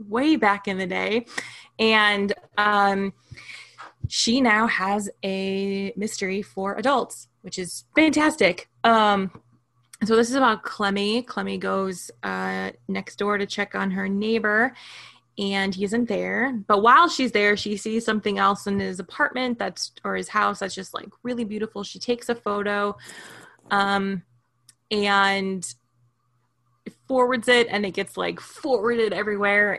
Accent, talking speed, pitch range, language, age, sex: American, 145 wpm, 190-235 Hz, English, 20-39, female